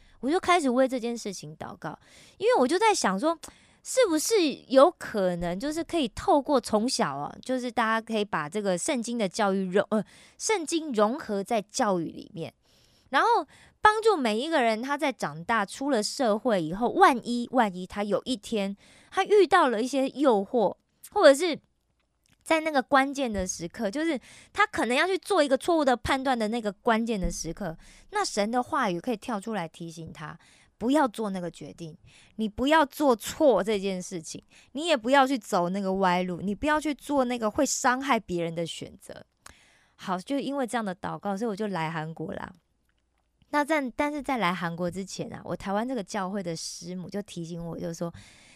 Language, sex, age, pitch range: Korean, female, 20-39, 185-280 Hz